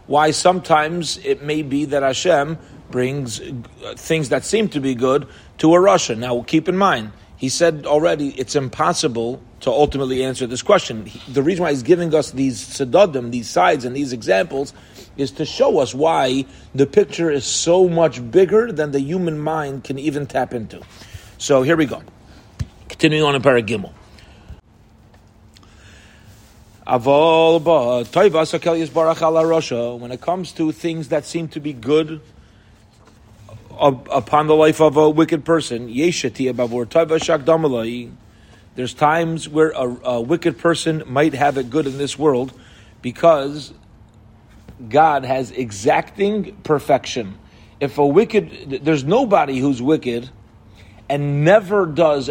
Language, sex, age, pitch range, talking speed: English, male, 40-59, 115-160 Hz, 135 wpm